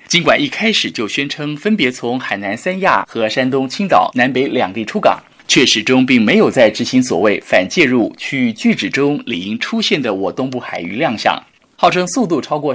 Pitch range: 135-225 Hz